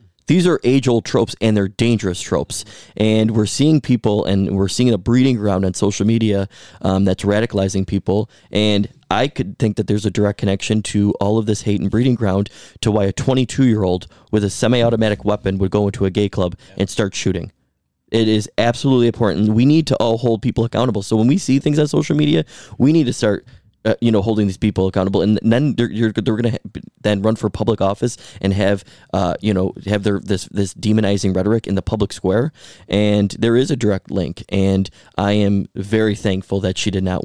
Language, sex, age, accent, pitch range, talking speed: English, male, 20-39, American, 95-115 Hz, 210 wpm